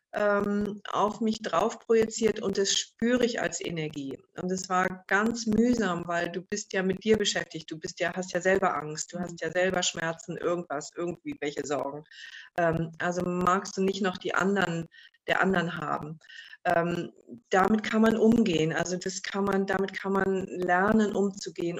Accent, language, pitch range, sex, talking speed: German, German, 175-210 Hz, female, 170 wpm